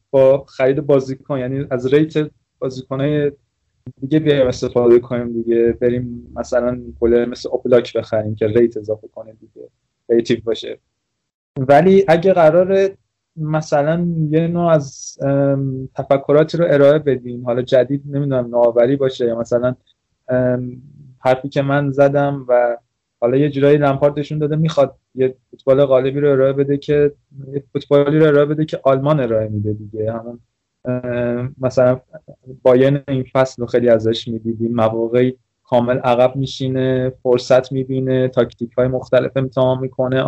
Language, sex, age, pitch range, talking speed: Persian, male, 20-39, 120-145 Hz, 135 wpm